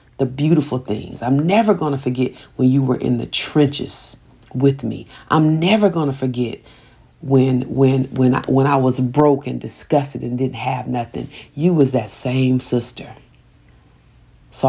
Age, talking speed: 40-59, 170 wpm